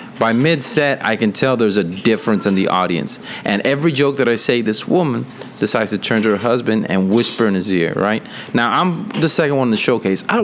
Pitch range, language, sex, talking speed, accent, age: 95-130 Hz, English, male, 235 wpm, American, 30-49